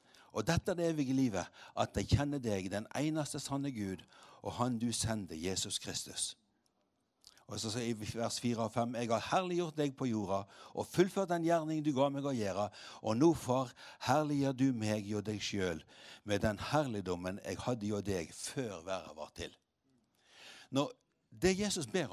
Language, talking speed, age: English, 180 wpm, 60-79